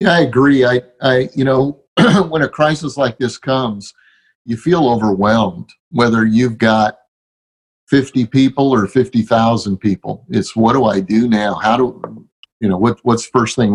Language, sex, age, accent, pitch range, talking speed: English, male, 50-69, American, 110-135 Hz, 170 wpm